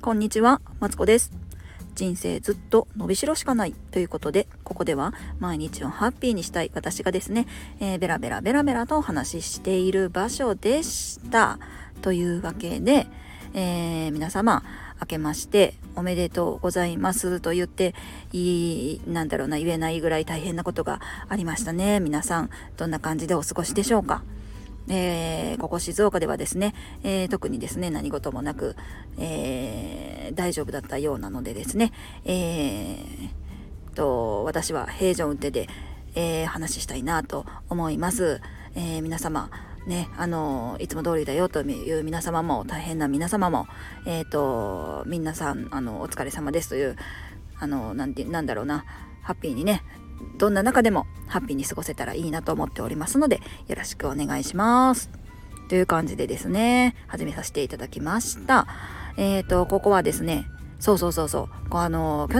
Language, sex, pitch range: Japanese, female, 150-195 Hz